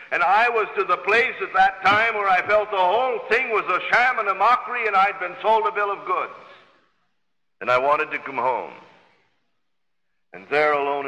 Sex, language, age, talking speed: male, Dutch, 60-79, 205 wpm